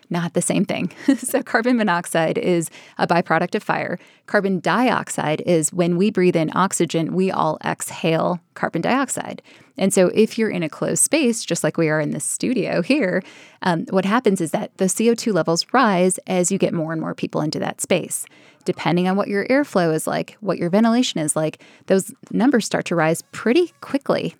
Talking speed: 195 wpm